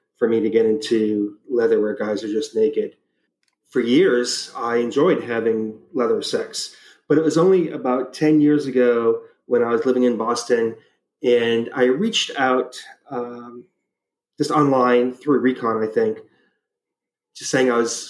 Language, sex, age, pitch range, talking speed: English, male, 30-49, 120-160 Hz, 155 wpm